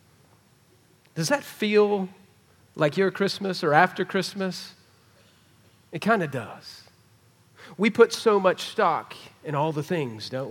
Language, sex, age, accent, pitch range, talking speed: English, male, 40-59, American, 130-185 Hz, 130 wpm